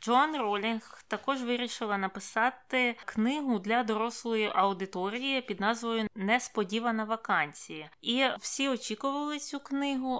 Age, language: 20-39, Ukrainian